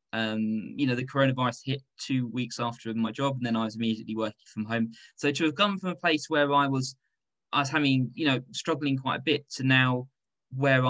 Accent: British